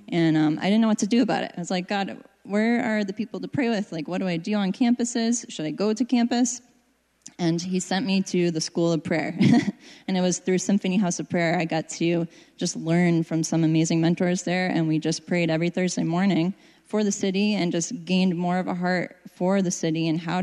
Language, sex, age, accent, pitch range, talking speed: English, female, 10-29, American, 170-205 Hz, 240 wpm